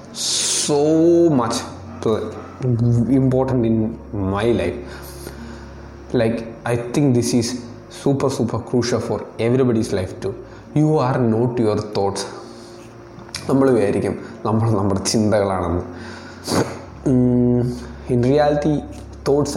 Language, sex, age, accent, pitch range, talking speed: Malayalam, male, 20-39, native, 105-130 Hz, 105 wpm